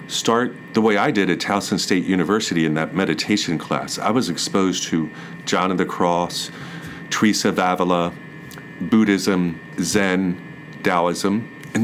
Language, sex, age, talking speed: English, male, 40-59, 140 wpm